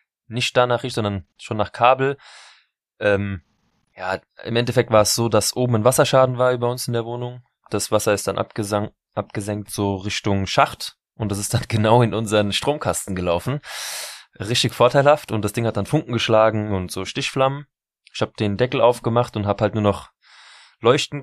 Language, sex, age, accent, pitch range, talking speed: German, male, 20-39, German, 105-120 Hz, 185 wpm